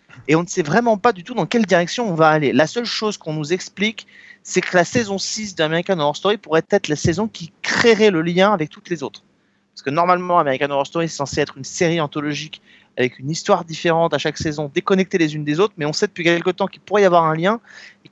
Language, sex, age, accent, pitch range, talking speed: French, male, 30-49, French, 160-205 Hz, 255 wpm